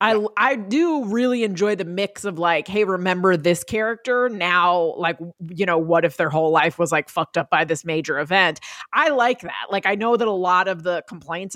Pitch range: 175-225 Hz